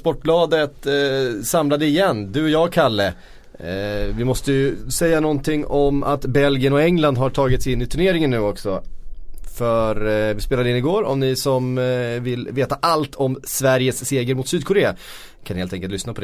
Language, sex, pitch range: Swedish, male, 105-140 Hz